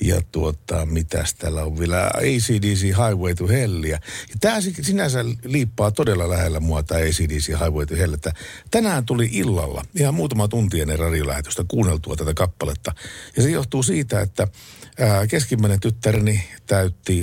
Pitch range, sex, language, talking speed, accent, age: 80-110 Hz, male, Finnish, 140 wpm, native, 50-69